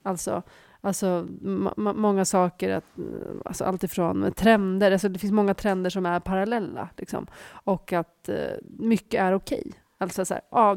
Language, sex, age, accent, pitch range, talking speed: Swedish, female, 30-49, native, 180-205 Hz, 155 wpm